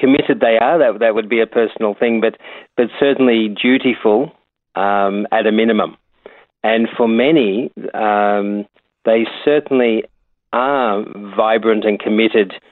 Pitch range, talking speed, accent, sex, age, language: 105-120 Hz, 130 wpm, Australian, male, 40-59, English